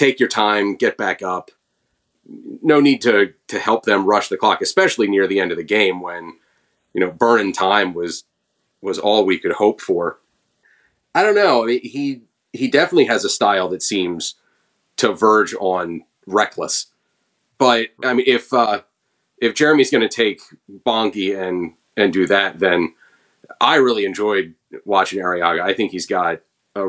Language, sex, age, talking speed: English, male, 30-49, 170 wpm